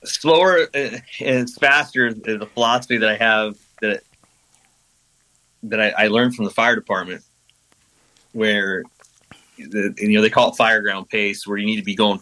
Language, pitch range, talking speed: English, 105-125 Hz, 165 wpm